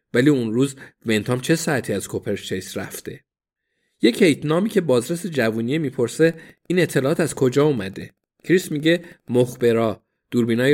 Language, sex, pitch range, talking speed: Persian, male, 115-155 Hz, 135 wpm